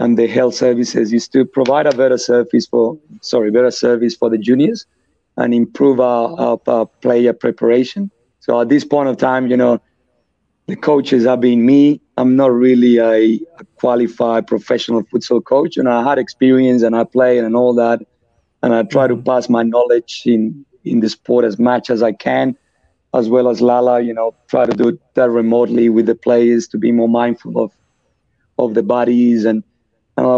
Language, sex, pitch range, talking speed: English, male, 115-125 Hz, 195 wpm